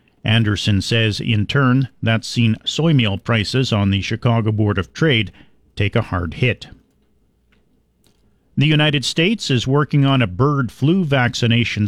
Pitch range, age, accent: 105-130 Hz, 50-69, American